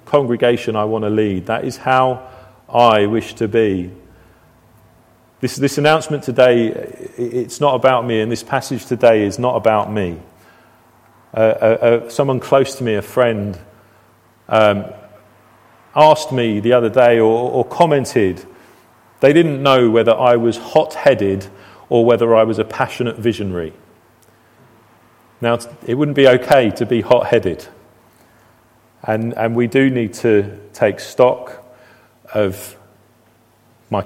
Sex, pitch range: male, 105-125 Hz